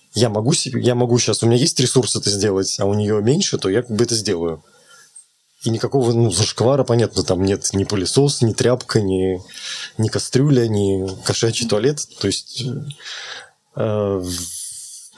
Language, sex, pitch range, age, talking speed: Russian, male, 110-135 Hz, 20-39, 165 wpm